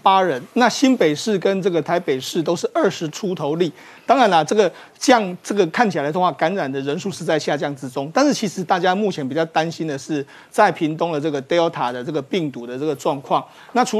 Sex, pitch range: male, 160-215 Hz